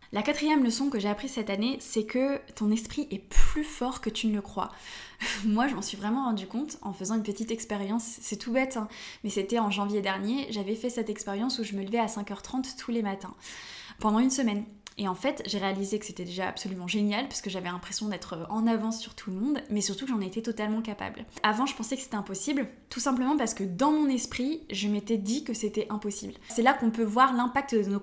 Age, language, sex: 10-29, French, female